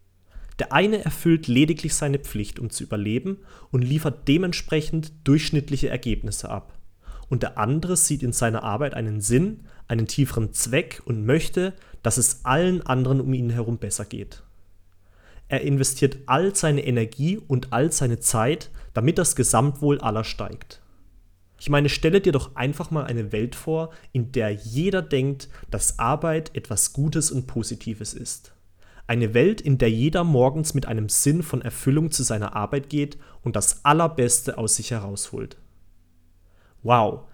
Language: German